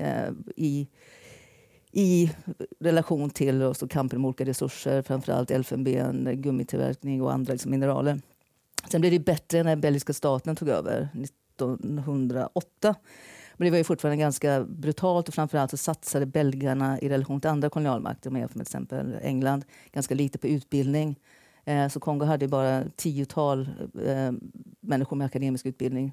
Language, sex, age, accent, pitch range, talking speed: Swedish, female, 40-59, native, 135-160 Hz, 140 wpm